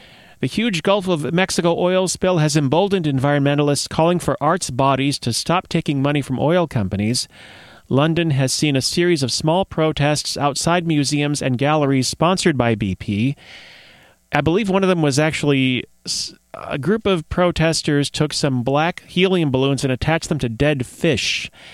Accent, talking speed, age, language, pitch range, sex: American, 160 wpm, 40-59, English, 120-160 Hz, male